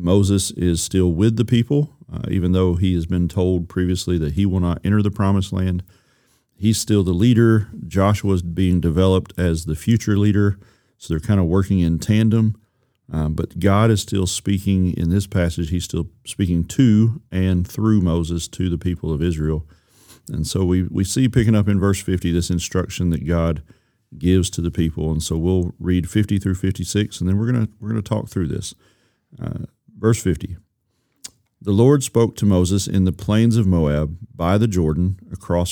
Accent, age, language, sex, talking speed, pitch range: American, 40-59, English, male, 190 wpm, 85-105 Hz